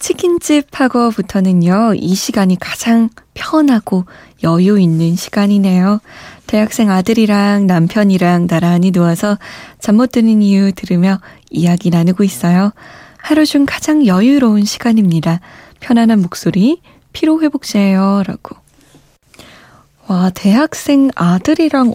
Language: Korean